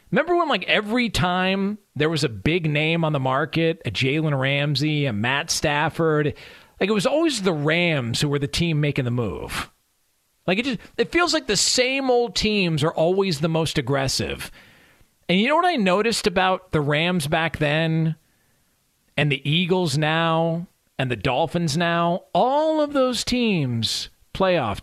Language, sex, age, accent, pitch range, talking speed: English, male, 40-59, American, 150-210 Hz, 170 wpm